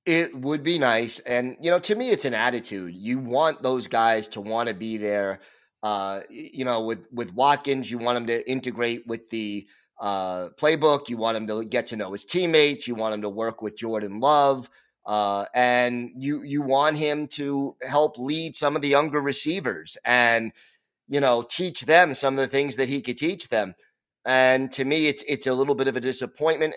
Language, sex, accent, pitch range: English, male, American, 120-150 Hz